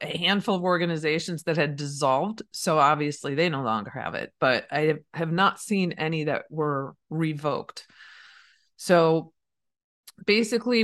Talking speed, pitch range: 140 wpm, 155-210 Hz